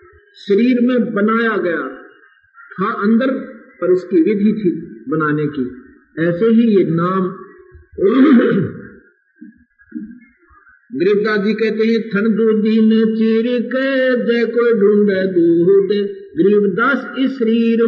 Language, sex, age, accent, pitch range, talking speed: Hindi, male, 50-69, native, 195-265 Hz, 85 wpm